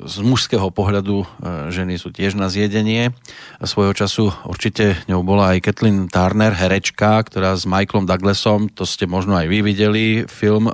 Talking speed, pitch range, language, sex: 155 wpm, 95-110 Hz, Slovak, male